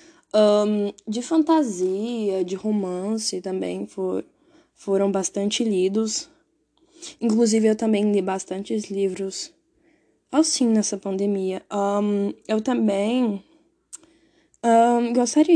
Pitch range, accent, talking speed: 200-260 Hz, Brazilian, 75 wpm